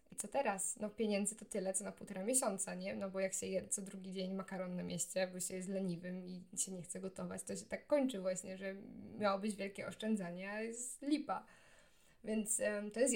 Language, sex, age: Polish, female, 20-39